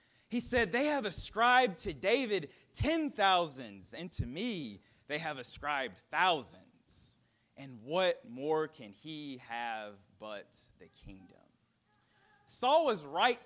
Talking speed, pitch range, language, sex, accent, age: 125 wpm, 140-205 Hz, English, male, American, 30-49